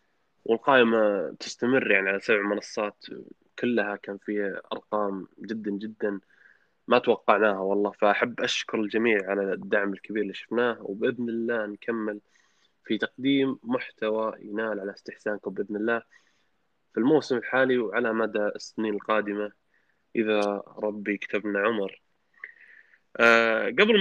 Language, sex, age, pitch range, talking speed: Arabic, male, 20-39, 100-115 Hz, 115 wpm